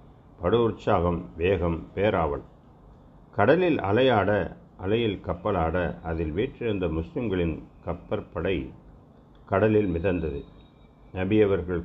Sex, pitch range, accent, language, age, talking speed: male, 85-100 Hz, native, Tamil, 50-69, 75 wpm